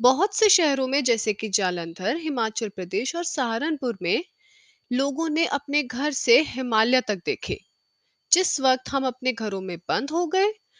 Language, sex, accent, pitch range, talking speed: Hindi, female, native, 230-315 Hz, 160 wpm